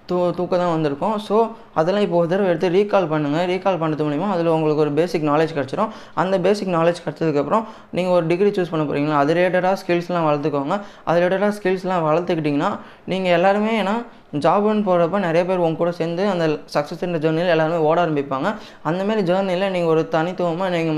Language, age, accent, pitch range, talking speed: Tamil, 20-39, native, 150-185 Hz, 175 wpm